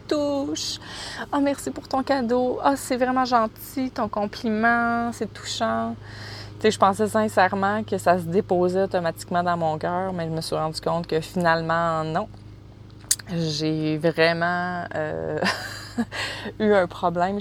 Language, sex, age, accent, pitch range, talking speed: French, female, 20-39, Canadian, 125-195 Hz, 150 wpm